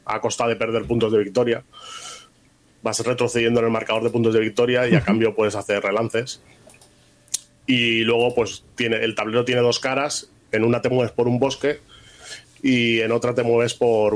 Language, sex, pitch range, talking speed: Spanish, male, 110-120 Hz, 185 wpm